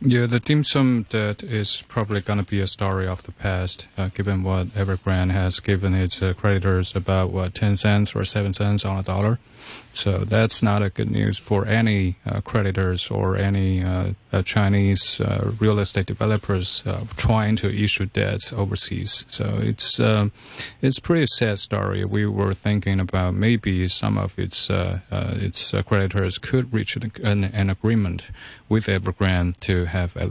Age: 30-49